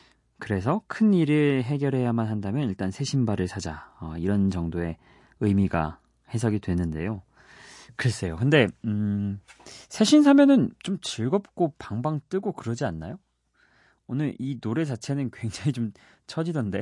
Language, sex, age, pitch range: Korean, male, 30-49, 95-140 Hz